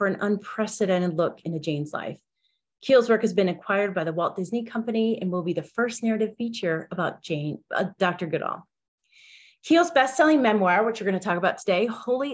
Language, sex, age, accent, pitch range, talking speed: English, female, 30-49, American, 170-225 Hz, 195 wpm